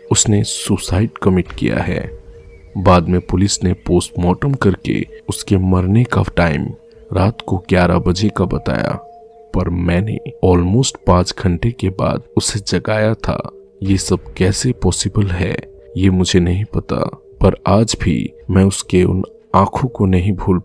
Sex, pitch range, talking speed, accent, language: male, 90-115 Hz, 140 wpm, native, Hindi